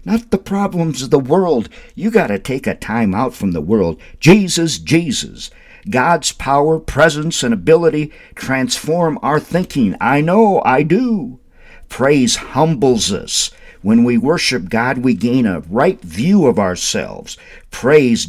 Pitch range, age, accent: 130-210 Hz, 50-69, American